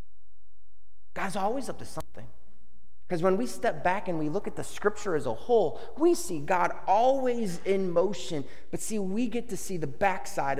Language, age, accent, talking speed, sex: English, 30-49, American, 185 wpm, male